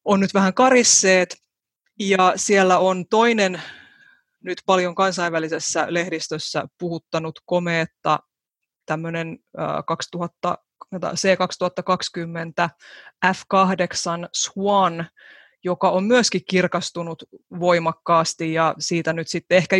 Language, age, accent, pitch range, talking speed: Finnish, 20-39, native, 165-190 Hz, 85 wpm